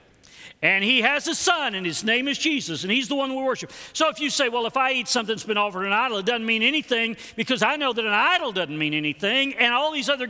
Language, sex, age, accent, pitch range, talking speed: English, male, 50-69, American, 150-240 Hz, 275 wpm